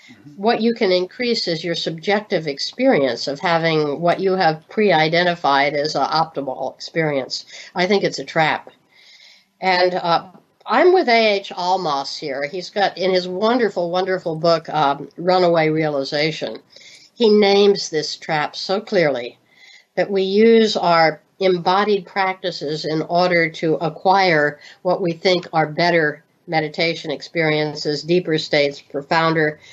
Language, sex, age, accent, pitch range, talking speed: English, female, 60-79, American, 155-200 Hz, 135 wpm